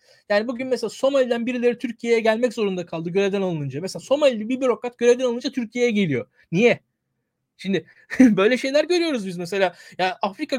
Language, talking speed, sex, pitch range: Turkish, 160 wpm, male, 210-265 Hz